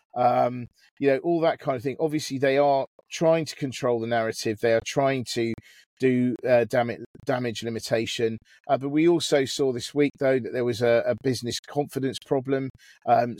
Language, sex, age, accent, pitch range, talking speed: English, male, 40-59, British, 120-140 Hz, 190 wpm